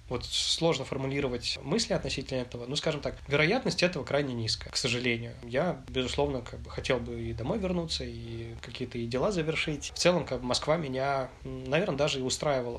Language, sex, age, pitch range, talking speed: Russian, male, 20-39, 125-145 Hz, 170 wpm